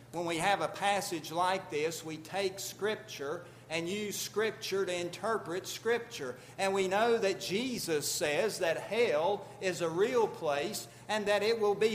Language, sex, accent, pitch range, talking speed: English, male, American, 130-185 Hz, 165 wpm